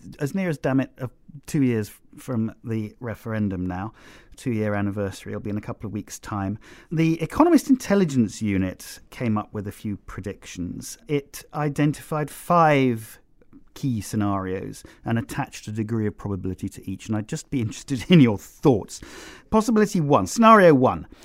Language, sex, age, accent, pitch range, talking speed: English, male, 40-59, British, 105-150 Hz, 160 wpm